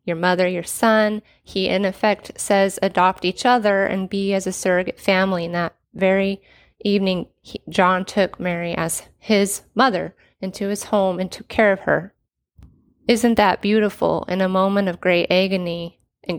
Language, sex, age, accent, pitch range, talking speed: English, female, 30-49, American, 175-205 Hz, 165 wpm